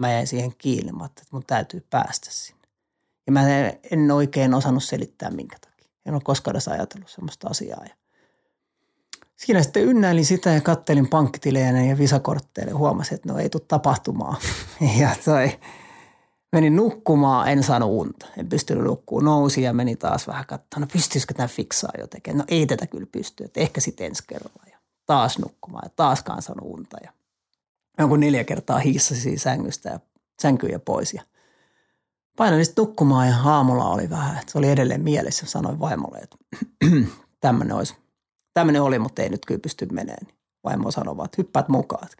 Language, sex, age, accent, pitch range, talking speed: Finnish, male, 30-49, native, 130-165 Hz, 160 wpm